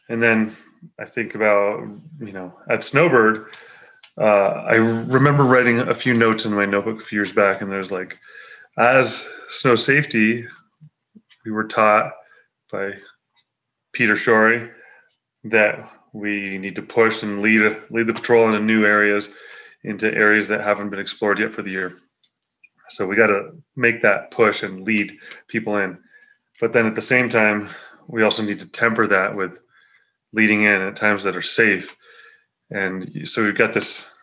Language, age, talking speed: English, 30-49, 165 wpm